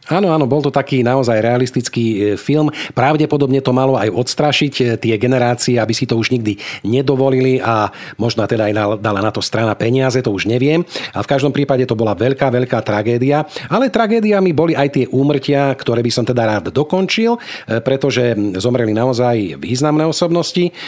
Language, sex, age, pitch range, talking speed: Slovak, male, 40-59, 115-140 Hz, 170 wpm